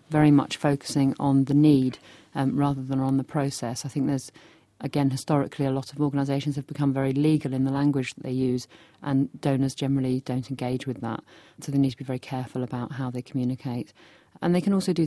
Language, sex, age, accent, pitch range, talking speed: English, female, 40-59, British, 130-145 Hz, 215 wpm